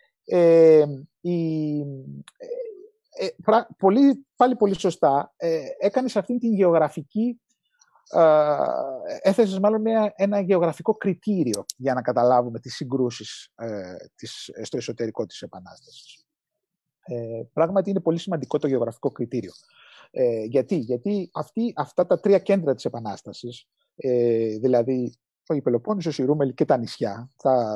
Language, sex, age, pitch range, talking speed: Greek, male, 30-49, 125-205 Hz, 130 wpm